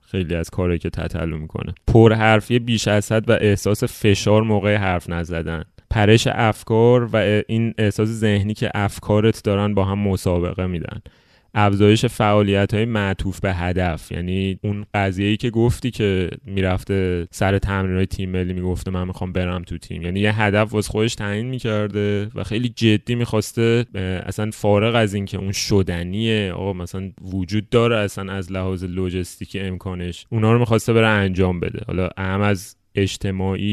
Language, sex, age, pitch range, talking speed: Persian, male, 20-39, 95-110 Hz, 160 wpm